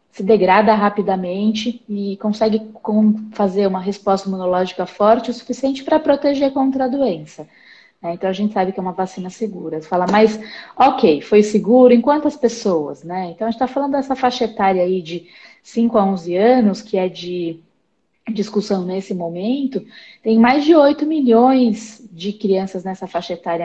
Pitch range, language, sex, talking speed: 190-235 Hz, Portuguese, female, 165 wpm